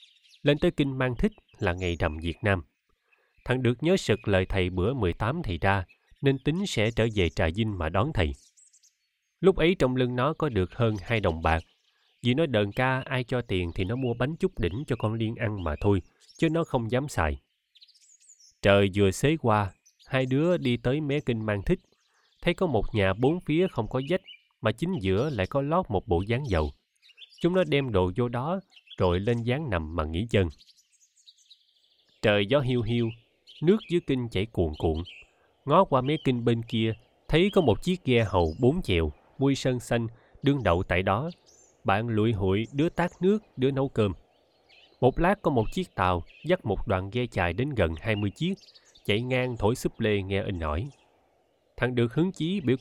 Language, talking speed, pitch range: Vietnamese, 205 wpm, 95-140 Hz